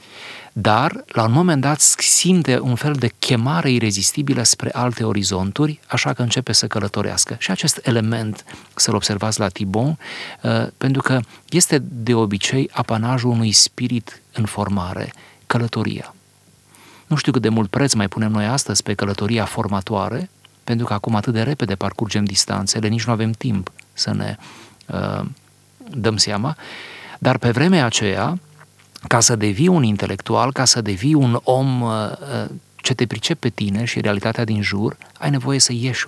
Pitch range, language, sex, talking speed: 105-130 Hz, Romanian, male, 155 wpm